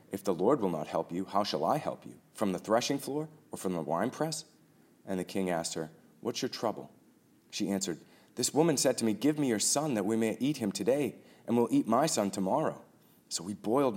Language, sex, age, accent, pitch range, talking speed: English, male, 30-49, American, 95-115 Hz, 235 wpm